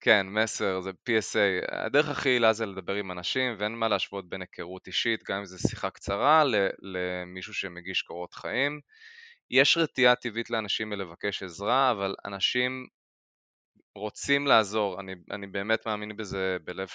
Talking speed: 150 wpm